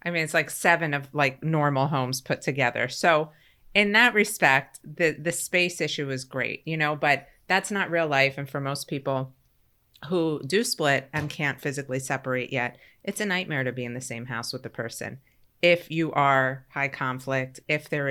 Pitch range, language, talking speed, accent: 130-165 Hz, English, 195 wpm, American